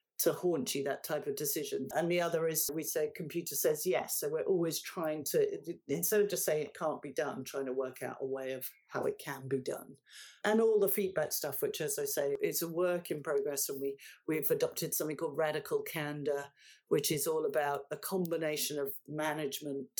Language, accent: English, British